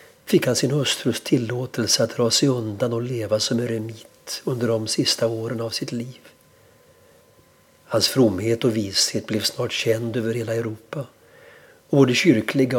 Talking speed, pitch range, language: 155 wpm, 115-135 Hz, Swedish